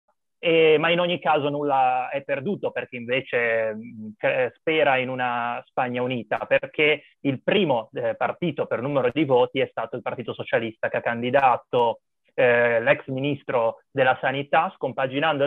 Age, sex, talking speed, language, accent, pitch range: 30-49, male, 145 wpm, Italian, native, 125-160 Hz